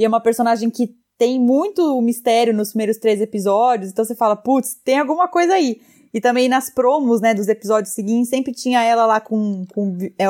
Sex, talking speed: female, 205 wpm